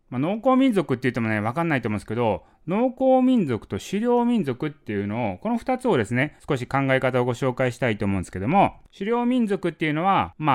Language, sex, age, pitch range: Japanese, male, 20-39, 115-180 Hz